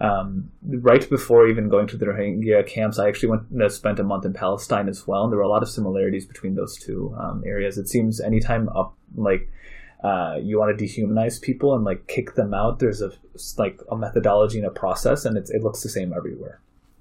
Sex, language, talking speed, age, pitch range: male, English, 220 wpm, 20-39, 100-120 Hz